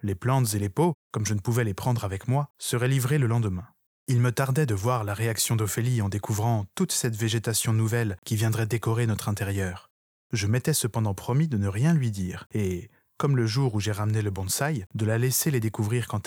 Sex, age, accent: male, 20-39, French